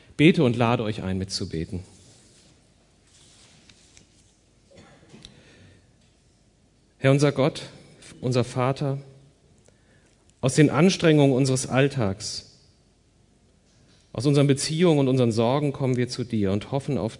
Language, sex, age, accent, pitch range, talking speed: German, male, 40-59, German, 105-135 Hz, 100 wpm